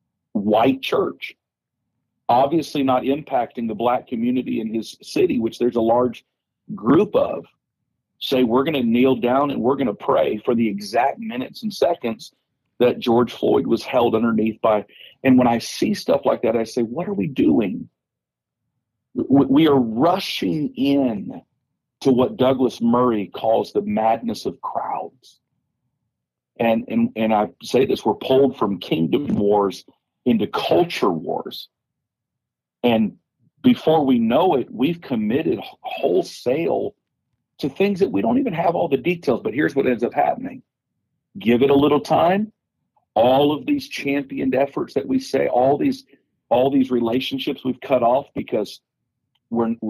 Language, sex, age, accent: English, male, 40-59, American